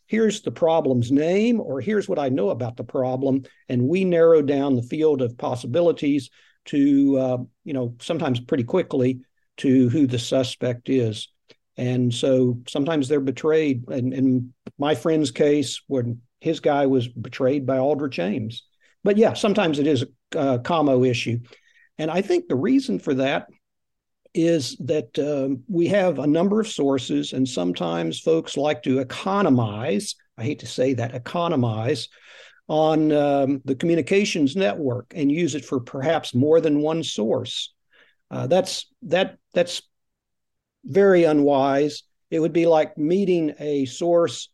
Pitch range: 130-160 Hz